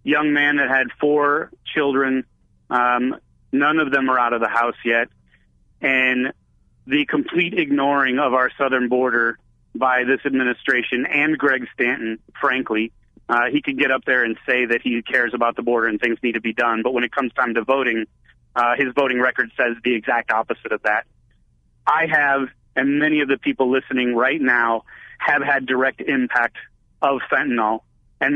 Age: 30-49